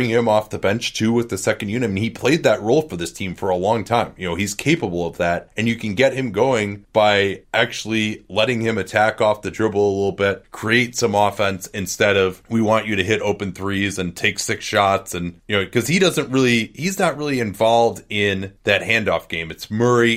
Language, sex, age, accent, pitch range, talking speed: English, male, 30-49, American, 100-120 Hz, 230 wpm